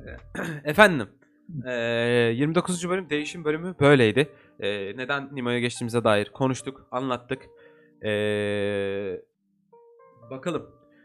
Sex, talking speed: male, 75 wpm